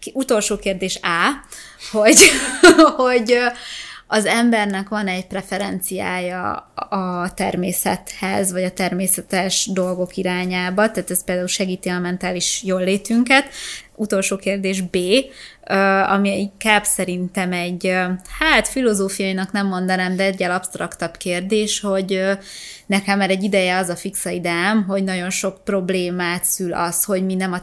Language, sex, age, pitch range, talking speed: Hungarian, female, 20-39, 180-205 Hz, 125 wpm